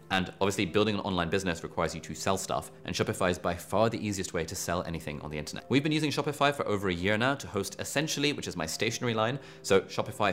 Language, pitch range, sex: English, 85-115 Hz, male